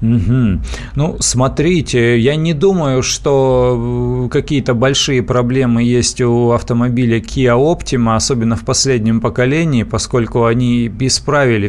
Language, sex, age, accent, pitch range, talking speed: Russian, male, 30-49, native, 110-130 Hz, 110 wpm